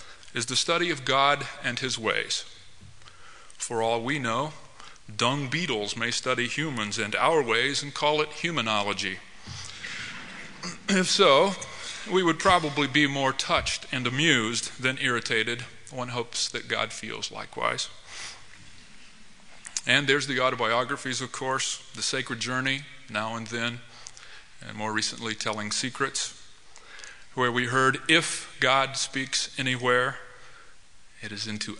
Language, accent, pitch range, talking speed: English, American, 110-135 Hz, 130 wpm